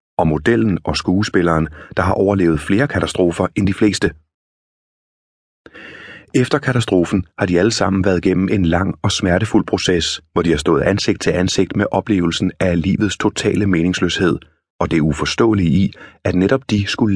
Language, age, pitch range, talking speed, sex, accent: Danish, 30-49, 85-105 Hz, 160 wpm, male, native